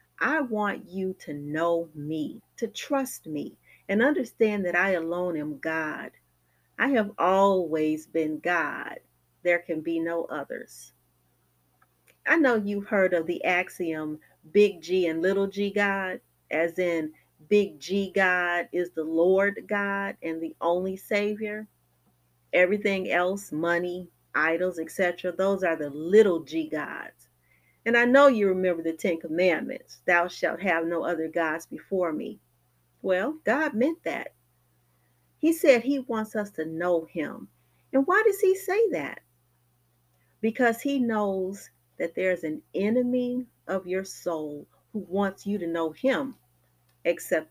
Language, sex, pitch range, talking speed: English, female, 160-205 Hz, 145 wpm